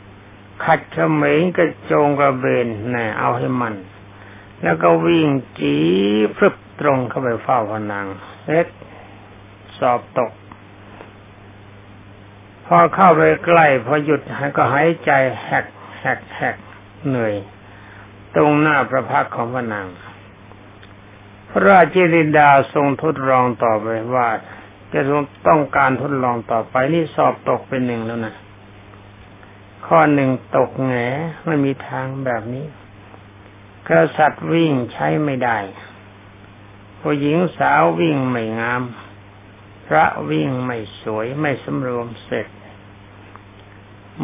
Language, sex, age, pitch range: Thai, male, 60-79, 100-140 Hz